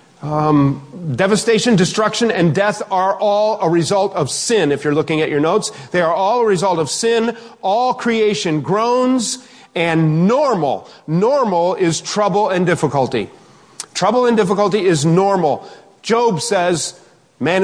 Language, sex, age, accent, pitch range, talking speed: English, male, 40-59, American, 130-185 Hz, 145 wpm